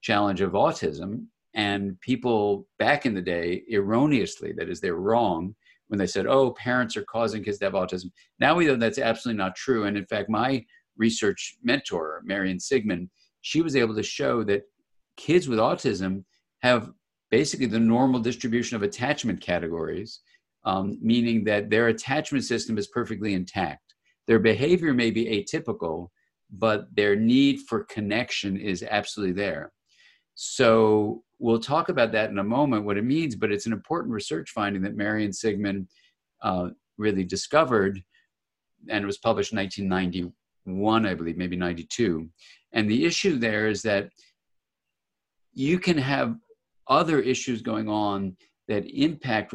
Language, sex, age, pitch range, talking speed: English, male, 50-69, 95-115 Hz, 155 wpm